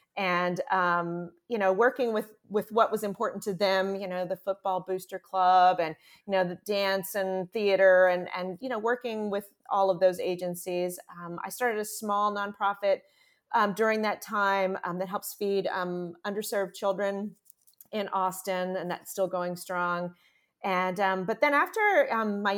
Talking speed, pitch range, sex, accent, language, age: 175 wpm, 180-210 Hz, female, American, English, 30-49